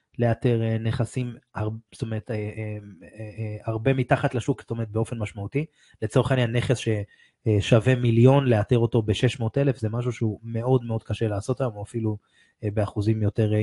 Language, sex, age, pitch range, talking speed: Hebrew, male, 20-39, 110-130 Hz, 140 wpm